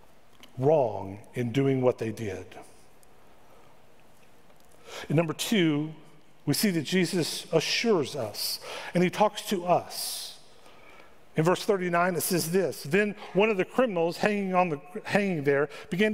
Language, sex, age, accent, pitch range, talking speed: English, male, 50-69, American, 160-220 Hz, 140 wpm